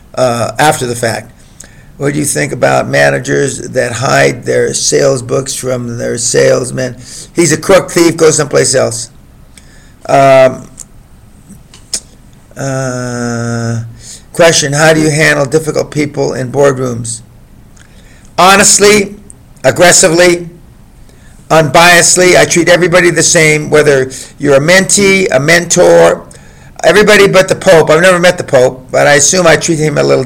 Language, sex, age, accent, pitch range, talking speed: English, male, 50-69, American, 115-170 Hz, 135 wpm